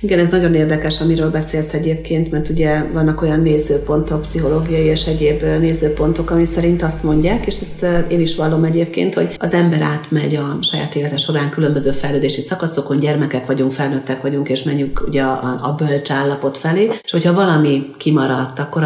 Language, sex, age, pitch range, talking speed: Hungarian, female, 40-59, 135-160 Hz, 170 wpm